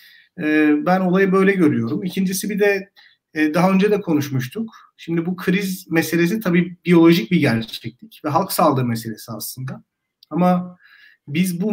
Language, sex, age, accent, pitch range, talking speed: Turkish, male, 50-69, native, 150-190 Hz, 140 wpm